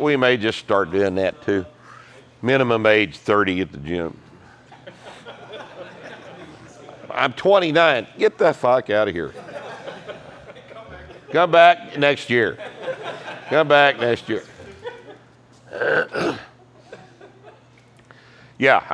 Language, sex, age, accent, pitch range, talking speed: English, male, 50-69, American, 110-130 Hz, 95 wpm